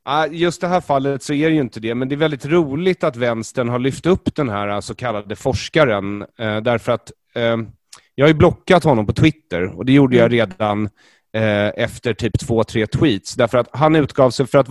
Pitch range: 110-150 Hz